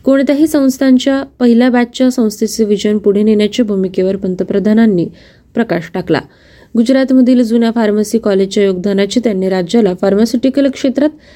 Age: 20-39